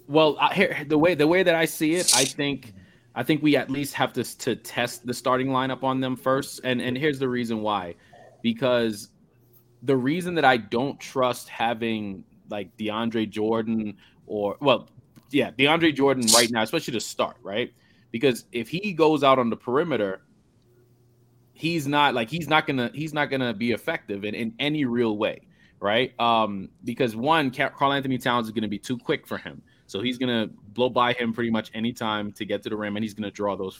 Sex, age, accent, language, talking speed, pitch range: male, 20-39, American, English, 205 wpm, 115-140 Hz